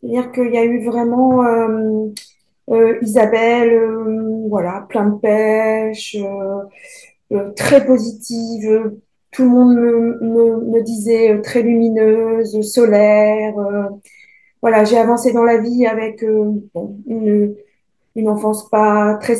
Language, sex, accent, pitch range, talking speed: French, female, French, 215-255 Hz, 135 wpm